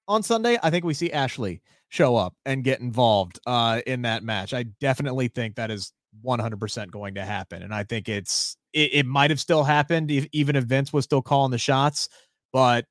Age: 30-49